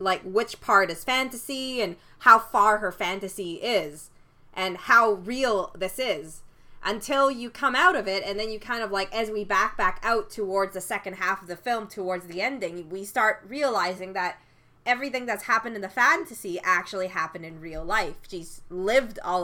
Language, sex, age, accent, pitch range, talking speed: English, female, 20-39, American, 180-245 Hz, 190 wpm